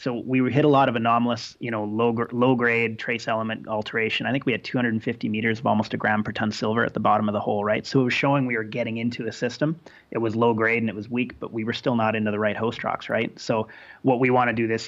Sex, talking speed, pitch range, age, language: male, 280 wpm, 105-120 Hz, 30-49, English